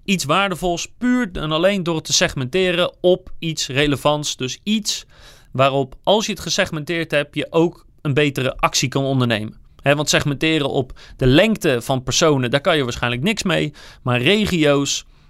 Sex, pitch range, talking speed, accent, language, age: male, 135-175 Hz, 165 wpm, Dutch, Dutch, 40-59